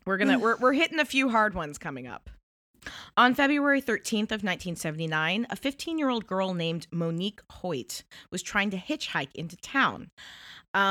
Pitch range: 180-245 Hz